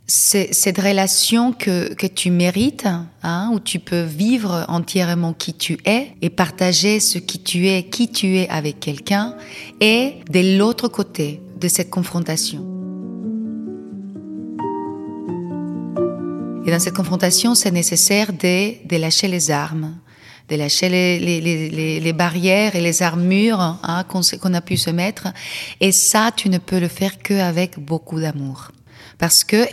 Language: French